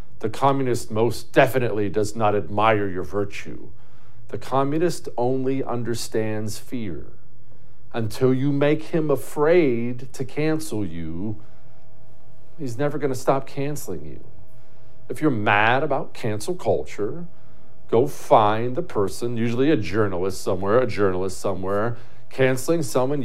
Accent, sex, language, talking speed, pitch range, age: American, male, English, 120 wpm, 110-175 Hz, 50-69